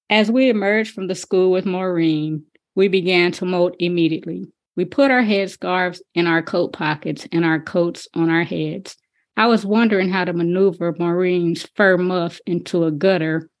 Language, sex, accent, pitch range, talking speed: English, female, American, 170-200 Hz, 170 wpm